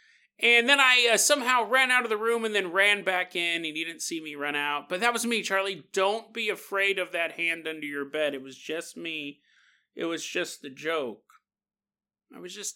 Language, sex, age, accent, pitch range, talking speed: English, male, 30-49, American, 150-230 Hz, 225 wpm